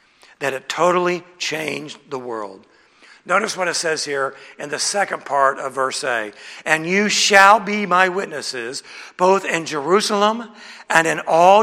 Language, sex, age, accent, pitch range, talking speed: English, male, 60-79, American, 155-215 Hz, 155 wpm